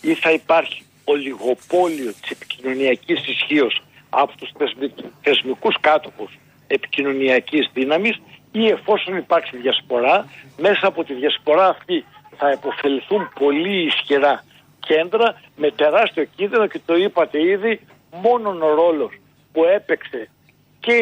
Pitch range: 150-210 Hz